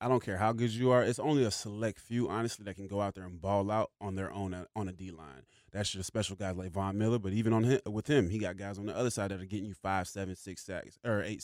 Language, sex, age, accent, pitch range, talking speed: English, male, 20-39, American, 95-115 Hz, 310 wpm